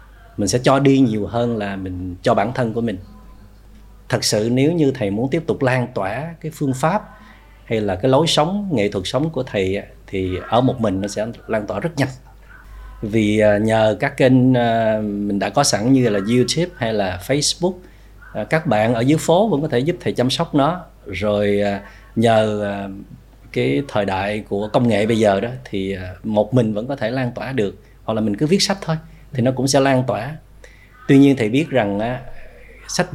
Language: Vietnamese